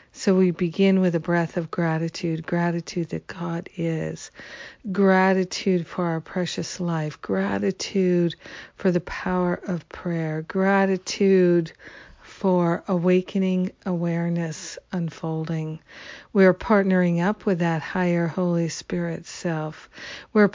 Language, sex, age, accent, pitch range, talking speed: English, female, 50-69, American, 165-185 Hz, 110 wpm